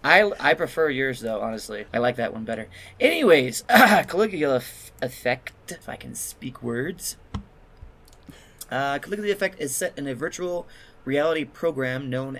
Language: English